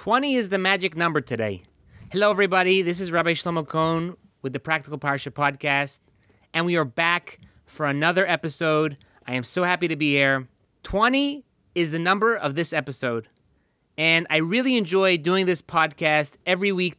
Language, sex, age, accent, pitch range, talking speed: English, male, 30-49, American, 145-190 Hz, 170 wpm